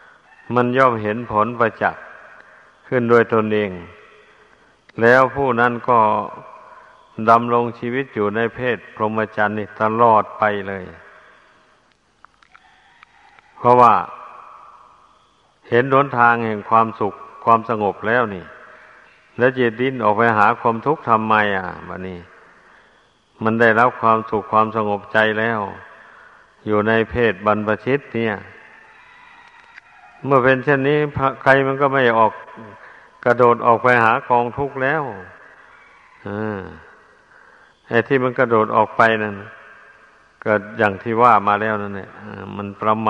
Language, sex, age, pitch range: Thai, male, 60-79, 110-125 Hz